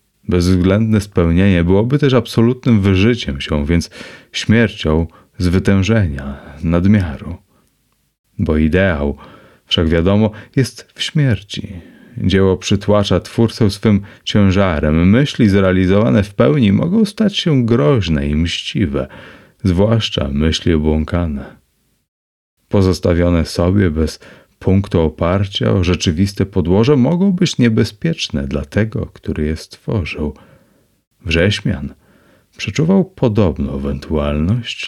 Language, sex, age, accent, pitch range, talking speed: Polish, male, 30-49, native, 85-110 Hz, 100 wpm